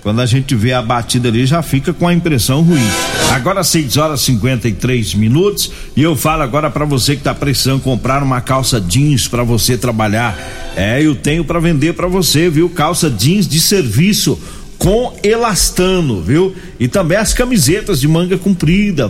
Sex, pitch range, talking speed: male, 130-175 Hz, 180 wpm